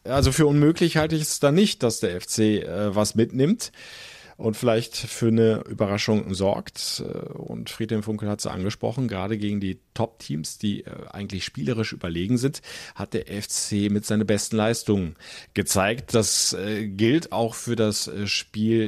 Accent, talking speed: German, 160 wpm